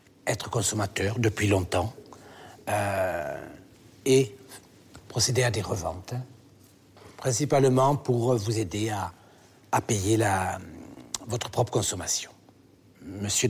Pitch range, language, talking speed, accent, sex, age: 100-130 Hz, French, 100 wpm, French, male, 60-79